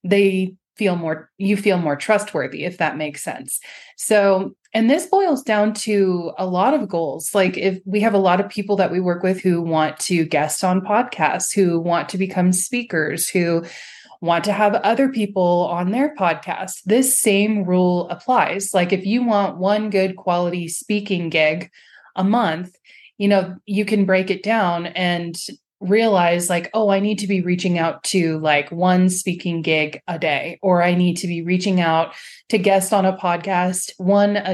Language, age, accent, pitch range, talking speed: English, 20-39, American, 175-210 Hz, 185 wpm